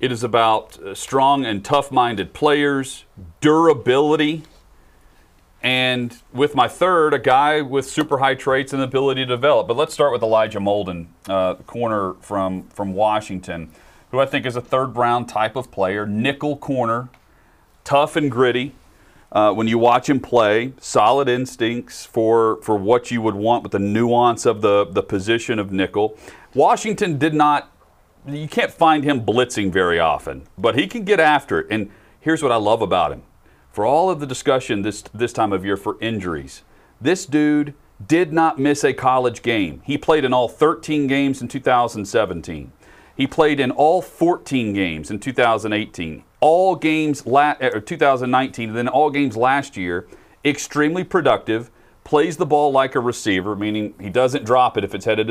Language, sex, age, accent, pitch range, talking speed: English, male, 40-59, American, 105-145 Hz, 170 wpm